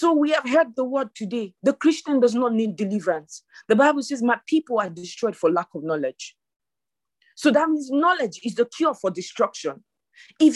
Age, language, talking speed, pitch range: 40-59, English, 195 wpm, 235-315 Hz